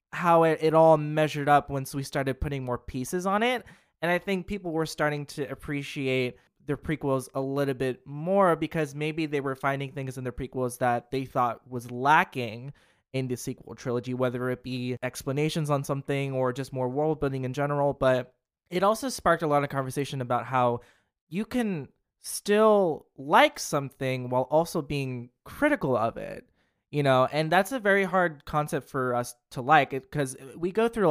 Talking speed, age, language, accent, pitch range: 185 wpm, 20-39, English, American, 130-175 Hz